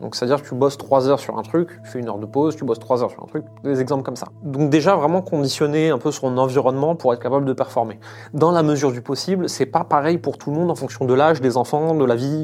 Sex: male